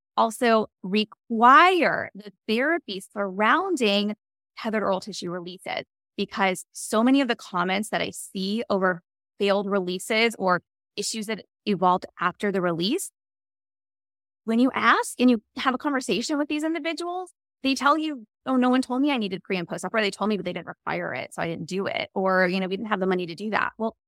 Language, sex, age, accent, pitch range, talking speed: English, female, 20-39, American, 185-245 Hz, 190 wpm